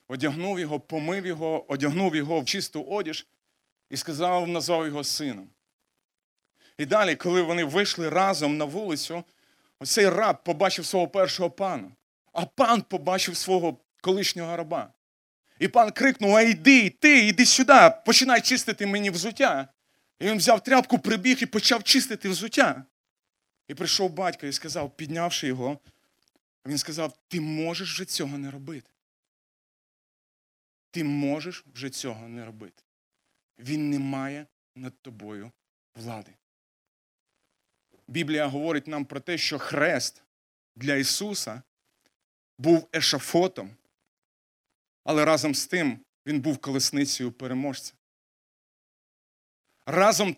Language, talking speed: Ukrainian, 120 wpm